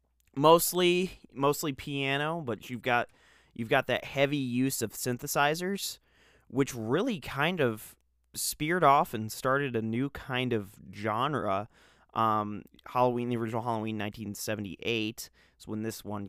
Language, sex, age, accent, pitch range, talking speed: English, male, 30-49, American, 110-135 Hz, 135 wpm